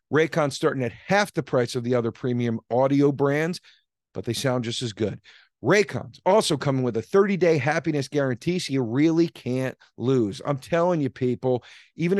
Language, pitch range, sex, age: English, 125-165 Hz, male, 40-59